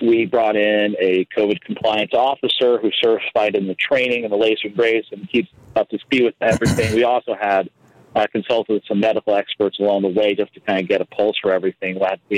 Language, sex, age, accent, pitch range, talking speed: English, male, 40-59, American, 100-120 Hz, 225 wpm